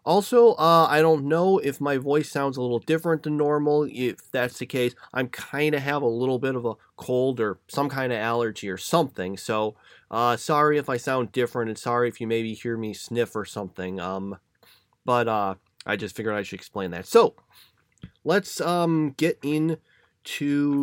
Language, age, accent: English, 30-49, American